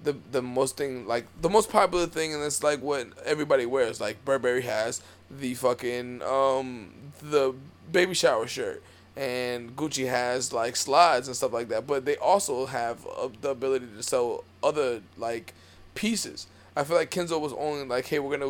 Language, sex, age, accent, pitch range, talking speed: English, male, 20-39, American, 120-150 Hz, 180 wpm